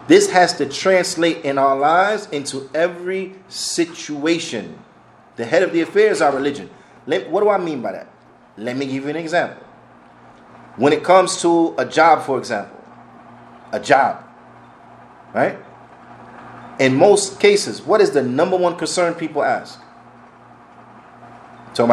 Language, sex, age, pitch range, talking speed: English, male, 30-49, 130-175 Hz, 140 wpm